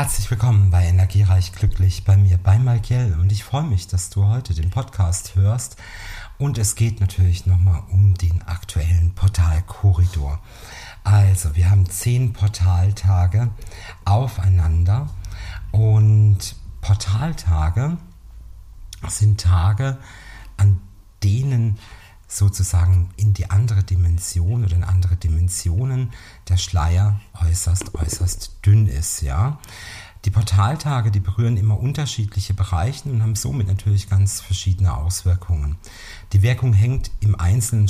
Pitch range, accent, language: 90-110 Hz, German, German